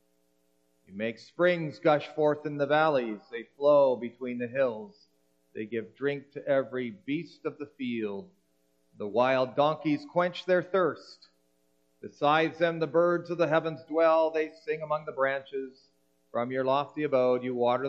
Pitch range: 110-140 Hz